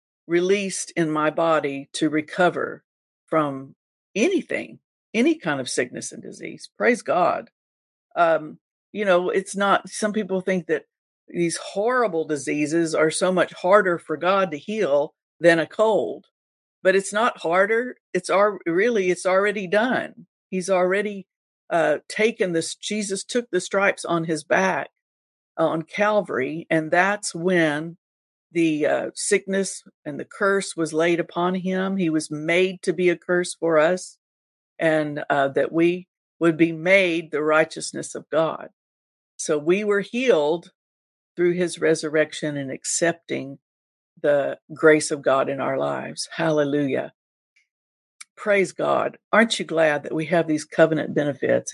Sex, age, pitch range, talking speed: female, 50-69, 155-190 Hz, 145 wpm